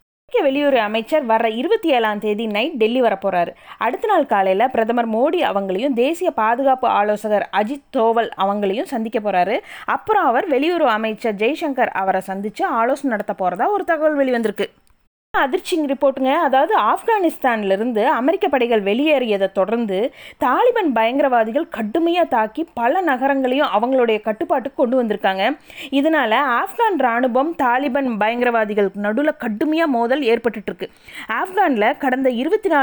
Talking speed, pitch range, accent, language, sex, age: 120 wpm, 230-325 Hz, native, Tamil, female, 20-39